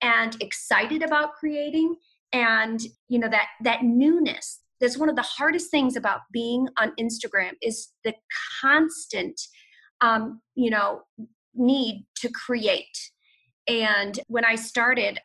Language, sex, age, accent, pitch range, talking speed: English, female, 30-49, American, 215-265 Hz, 130 wpm